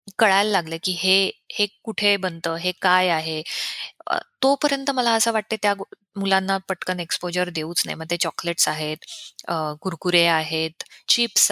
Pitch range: 170-205 Hz